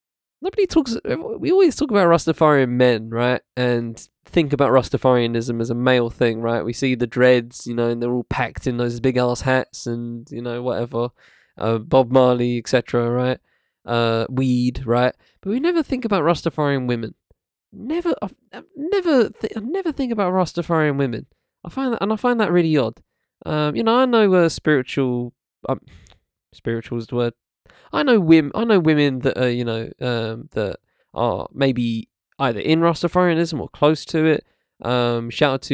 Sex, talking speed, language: male, 180 wpm, English